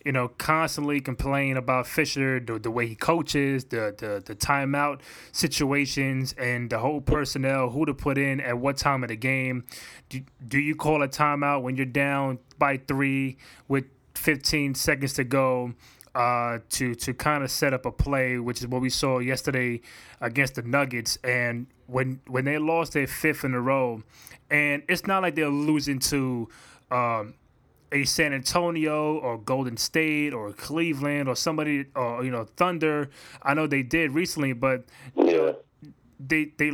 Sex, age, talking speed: male, 20-39, 170 wpm